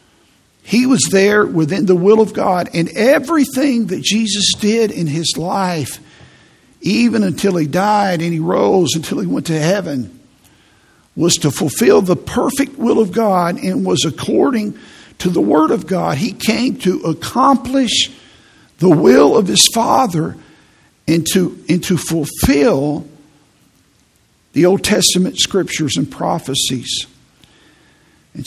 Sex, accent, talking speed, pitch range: male, American, 135 wpm, 155-205 Hz